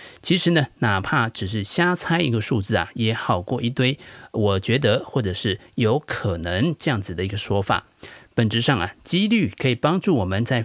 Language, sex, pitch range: Chinese, male, 105-150 Hz